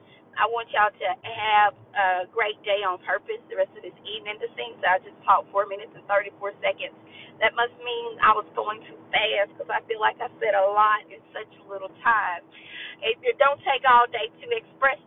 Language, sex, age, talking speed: English, female, 40-59, 220 wpm